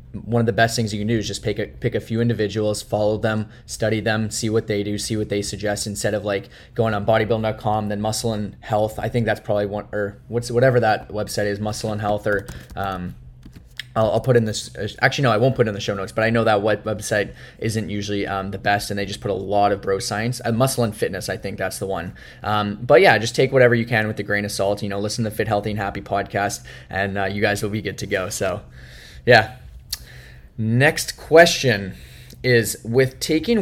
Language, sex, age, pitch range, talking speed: English, male, 10-29, 100-115 Hz, 245 wpm